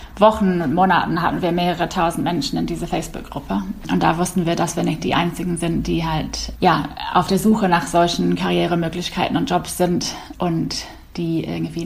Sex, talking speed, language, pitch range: female, 180 wpm, German, 165-190 Hz